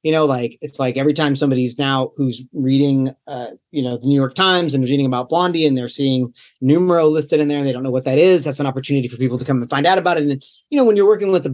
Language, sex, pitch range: English, male, 125-150 Hz